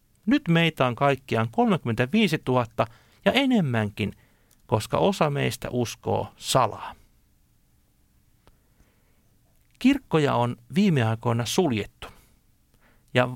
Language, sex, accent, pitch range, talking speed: Finnish, male, native, 115-155 Hz, 85 wpm